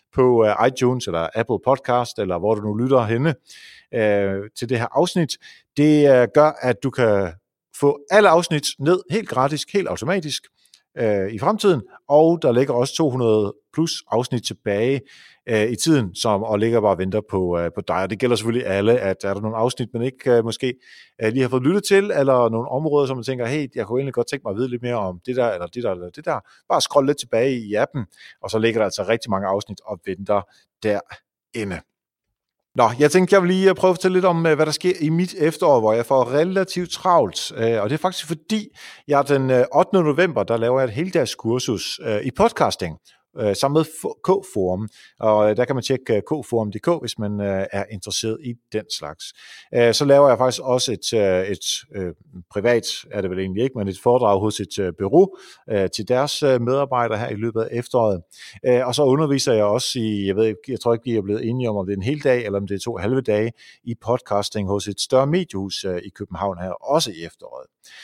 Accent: native